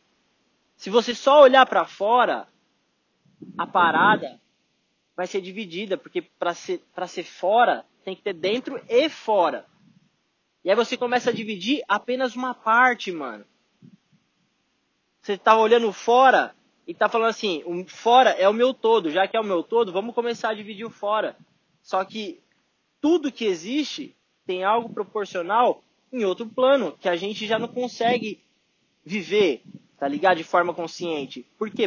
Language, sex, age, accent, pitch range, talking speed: Portuguese, male, 20-39, Brazilian, 185-240 Hz, 155 wpm